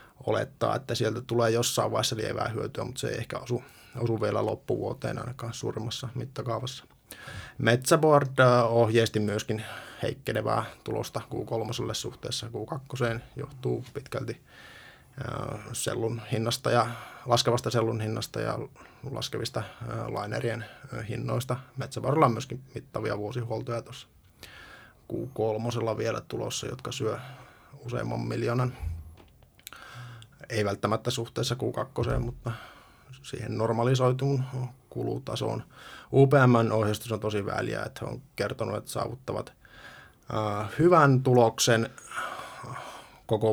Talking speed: 105 wpm